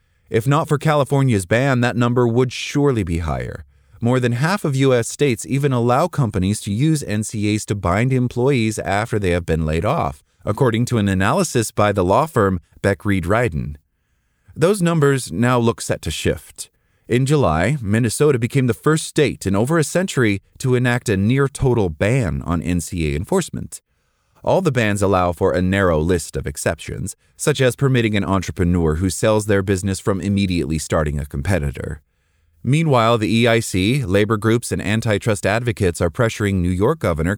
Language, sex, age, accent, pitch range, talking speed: English, male, 30-49, American, 90-120 Hz, 165 wpm